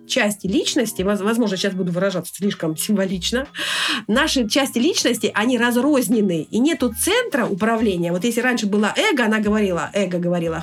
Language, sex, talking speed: Russian, female, 145 wpm